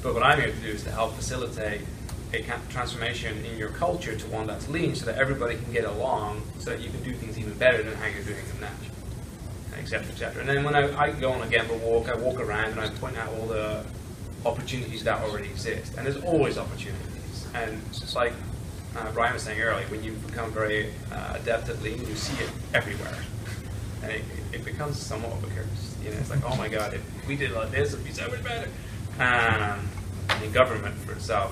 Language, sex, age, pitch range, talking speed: English, male, 20-39, 110-130 Hz, 235 wpm